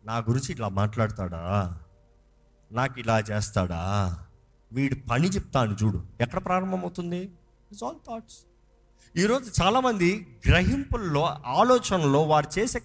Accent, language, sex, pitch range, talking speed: native, Telugu, male, 120-195 Hz, 105 wpm